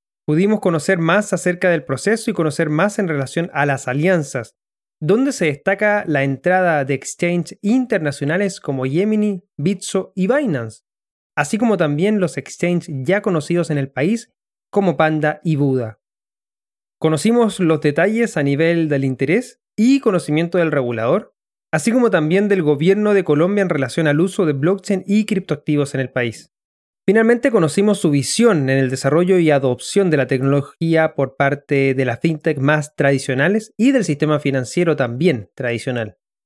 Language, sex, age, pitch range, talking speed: Spanish, male, 20-39, 140-190 Hz, 155 wpm